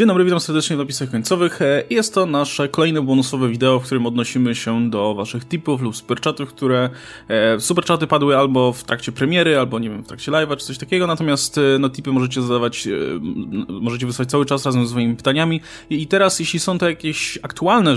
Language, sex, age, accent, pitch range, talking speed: Polish, male, 20-39, native, 125-155 Hz, 195 wpm